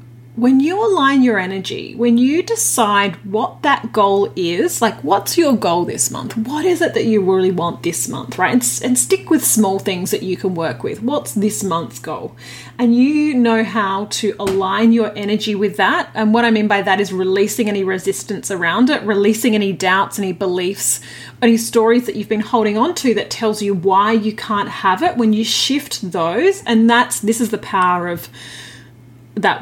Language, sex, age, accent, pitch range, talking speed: English, female, 30-49, Australian, 190-240 Hz, 200 wpm